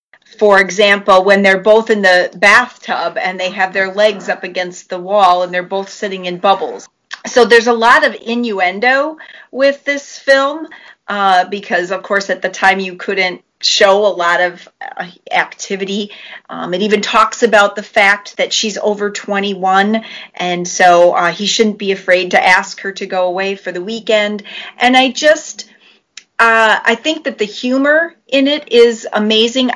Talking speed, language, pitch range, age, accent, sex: 175 wpm, English, 195-245 Hz, 40-59, American, female